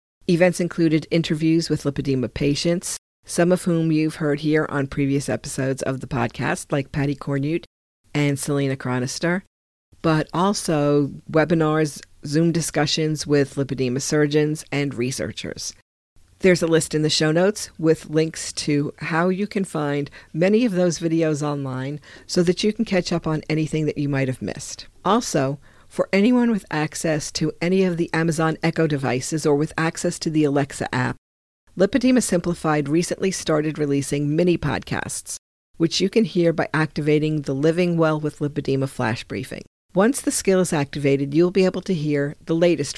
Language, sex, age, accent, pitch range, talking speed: English, female, 50-69, American, 145-175 Hz, 160 wpm